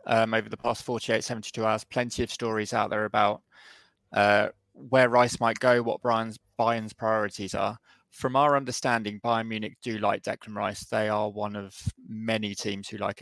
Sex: male